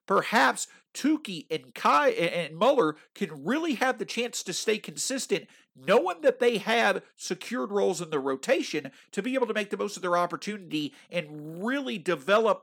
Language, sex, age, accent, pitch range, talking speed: English, male, 50-69, American, 170-230 Hz, 175 wpm